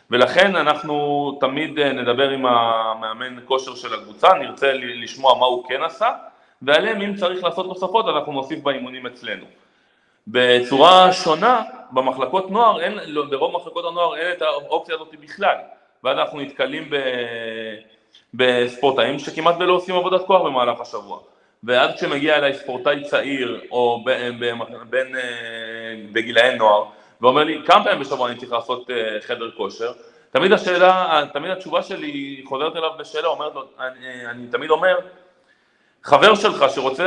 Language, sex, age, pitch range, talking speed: Hebrew, male, 30-49, 125-175 Hz, 140 wpm